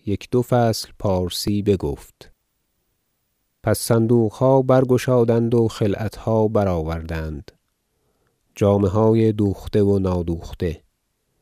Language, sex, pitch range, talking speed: Persian, male, 90-110 Hz, 90 wpm